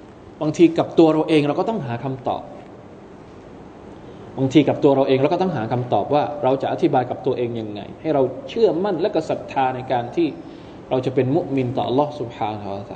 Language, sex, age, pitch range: Thai, male, 20-39, 130-170 Hz